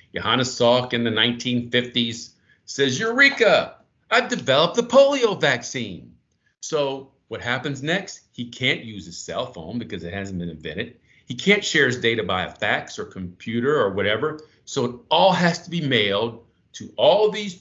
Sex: male